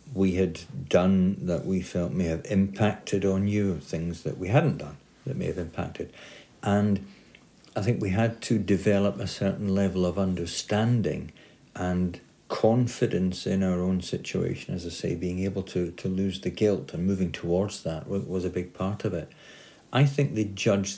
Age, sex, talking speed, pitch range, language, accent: 60-79, male, 175 wpm, 90-105 Hz, English, British